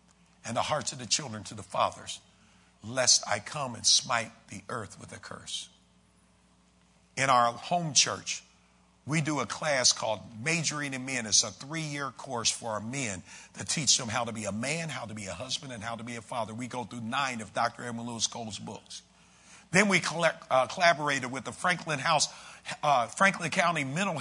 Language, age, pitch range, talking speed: English, 50-69, 120-175 Hz, 195 wpm